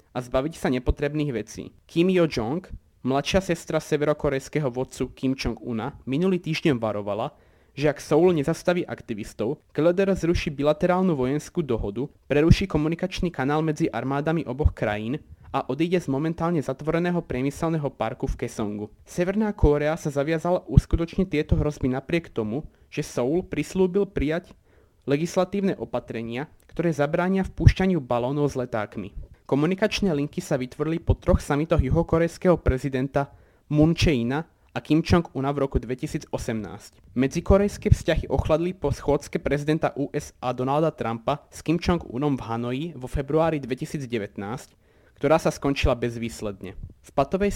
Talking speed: 130 wpm